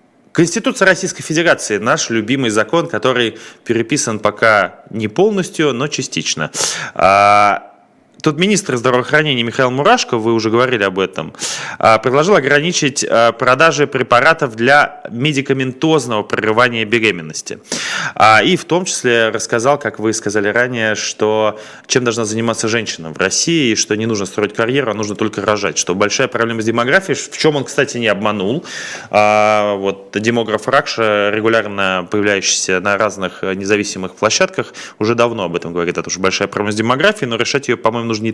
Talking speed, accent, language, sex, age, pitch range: 145 wpm, native, Russian, male, 20-39, 110-145 Hz